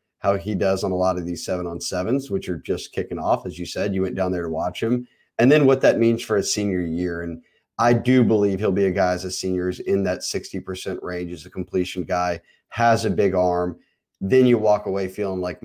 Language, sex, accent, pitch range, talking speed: English, male, American, 90-120 Hz, 245 wpm